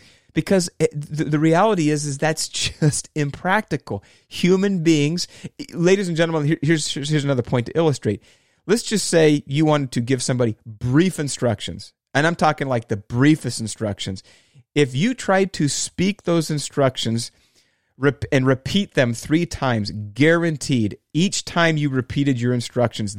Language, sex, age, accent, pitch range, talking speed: English, male, 30-49, American, 115-155 Hz, 140 wpm